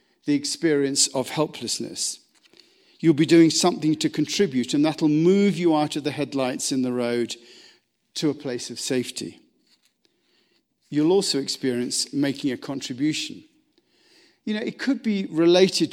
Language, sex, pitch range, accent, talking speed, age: English, male, 140-195 Hz, British, 145 wpm, 50-69